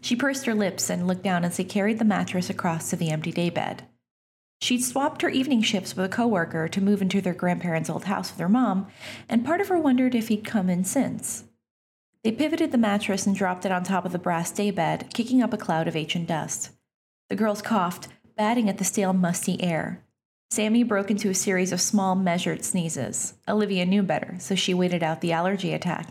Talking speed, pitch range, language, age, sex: 215 wpm, 170-215 Hz, English, 30-49, female